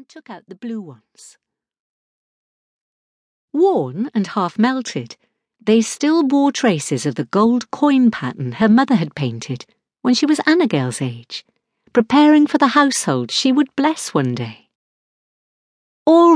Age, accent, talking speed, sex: 50-69, British, 145 wpm, female